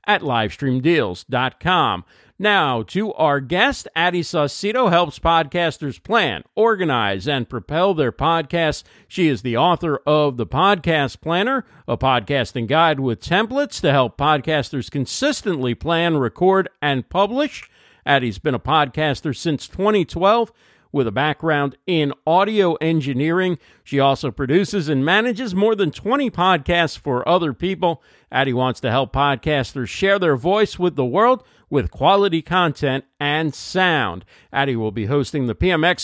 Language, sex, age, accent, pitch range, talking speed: English, male, 50-69, American, 135-190 Hz, 140 wpm